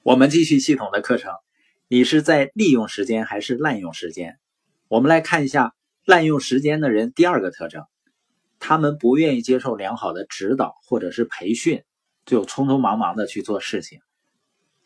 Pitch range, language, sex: 120-175 Hz, Chinese, male